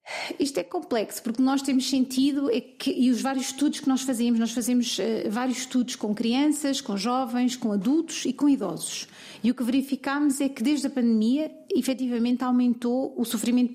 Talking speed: 190 wpm